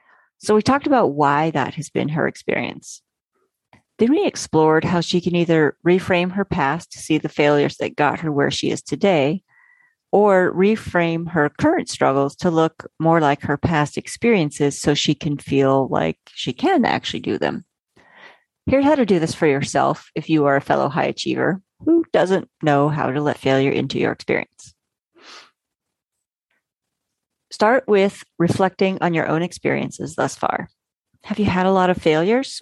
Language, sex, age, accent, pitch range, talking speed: English, female, 40-59, American, 145-200 Hz, 170 wpm